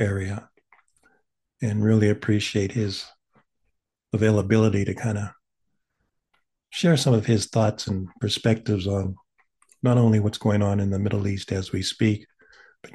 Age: 50-69